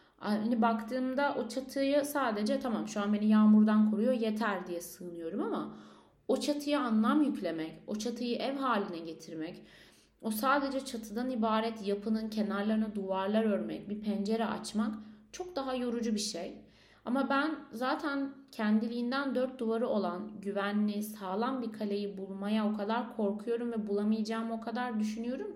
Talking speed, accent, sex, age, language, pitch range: 140 wpm, native, female, 30-49, Turkish, 200-245 Hz